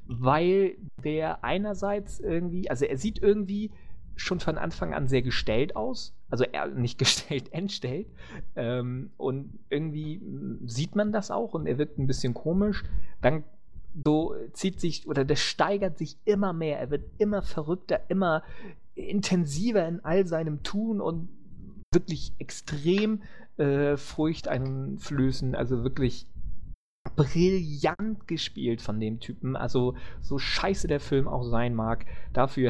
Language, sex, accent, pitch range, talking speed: English, male, German, 115-160 Hz, 135 wpm